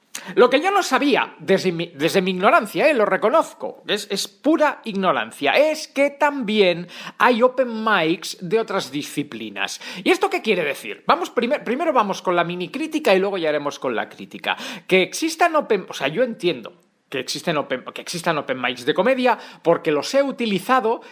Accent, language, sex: Spanish, Spanish, male